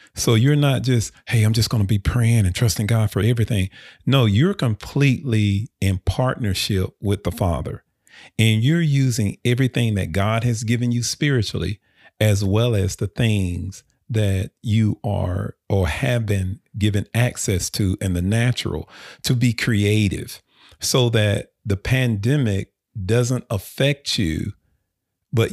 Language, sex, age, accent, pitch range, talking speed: English, male, 40-59, American, 100-125 Hz, 145 wpm